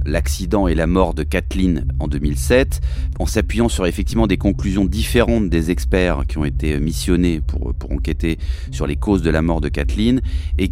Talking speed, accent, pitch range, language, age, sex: 185 wpm, French, 75-95 Hz, French, 30-49, male